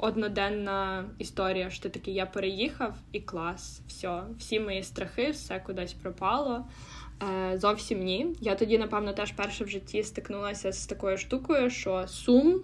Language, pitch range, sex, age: Russian, 190-220 Hz, female, 10-29